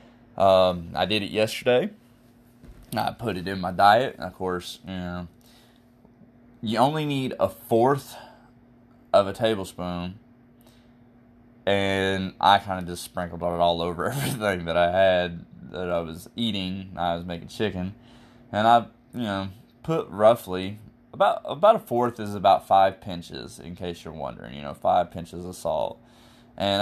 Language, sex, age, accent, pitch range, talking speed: English, male, 20-39, American, 90-120 Hz, 155 wpm